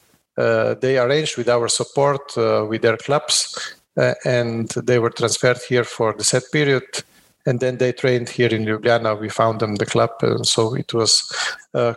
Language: English